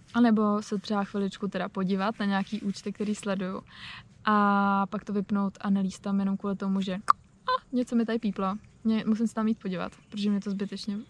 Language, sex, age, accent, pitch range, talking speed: Czech, female, 20-39, native, 200-215 Hz, 200 wpm